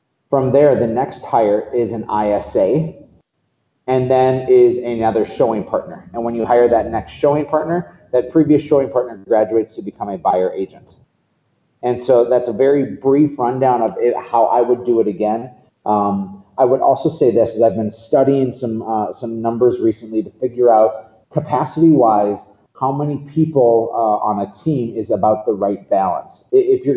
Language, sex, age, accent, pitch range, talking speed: English, male, 30-49, American, 105-135 Hz, 180 wpm